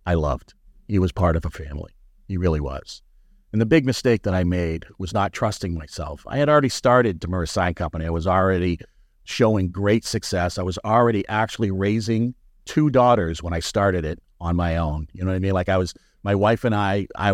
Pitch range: 85-110 Hz